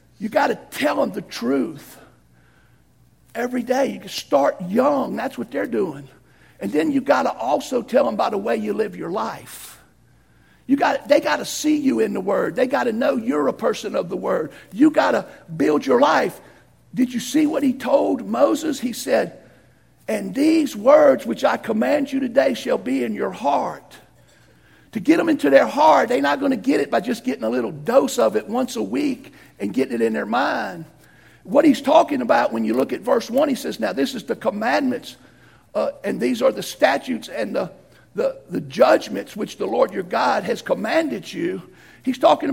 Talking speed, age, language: 205 wpm, 50-69, English